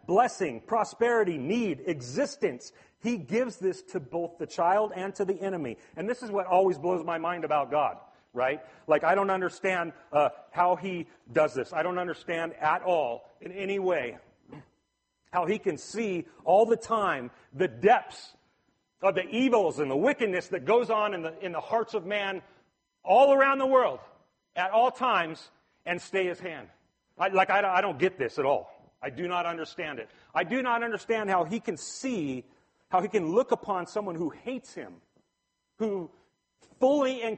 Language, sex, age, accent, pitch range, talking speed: English, male, 40-59, American, 175-230 Hz, 180 wpm